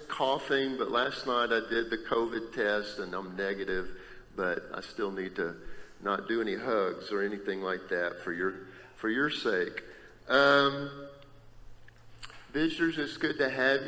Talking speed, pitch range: 155 wpm, 105-130 Hz